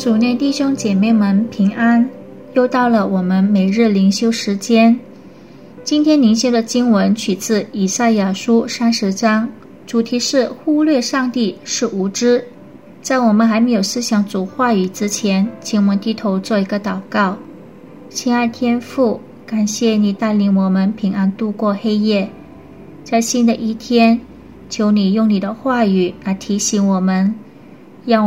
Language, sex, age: Indonesian, female, 20-39